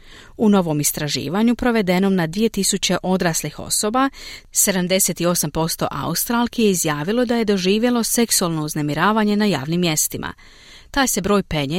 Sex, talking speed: female, 120 wpm